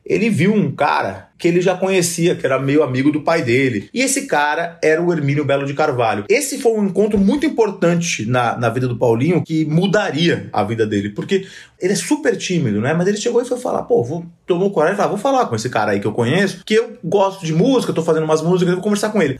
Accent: Brazilian